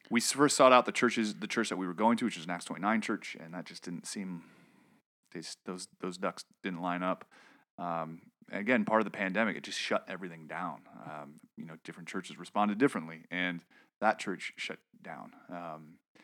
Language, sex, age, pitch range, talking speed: English, male, 30-49, 90-120 Hz, 205 wpm